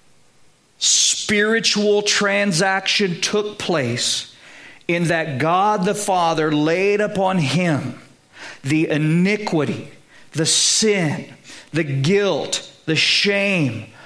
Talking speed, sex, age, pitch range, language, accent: 85 wpm, male, 50-69, 165-220 Hz, English, American